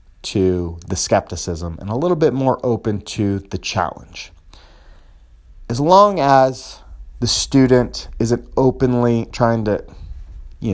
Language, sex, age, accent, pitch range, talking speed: English, male, 30-49, American, 90-125 Hz, 125 wpm